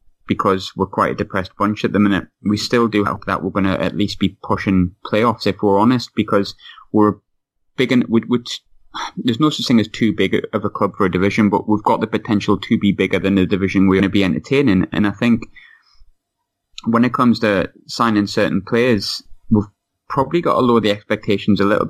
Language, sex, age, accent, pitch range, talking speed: English, male, 20-39, British, 100-115 Hz, 210 wpm